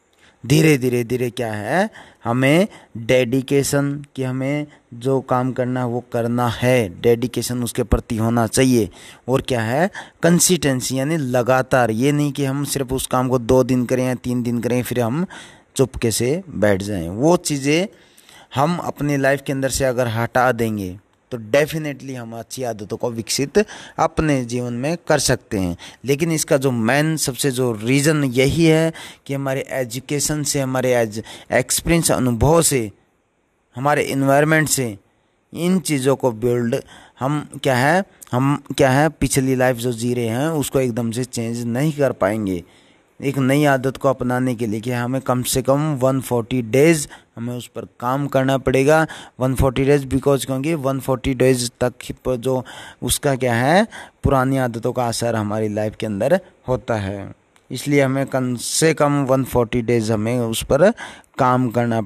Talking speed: 165 wpm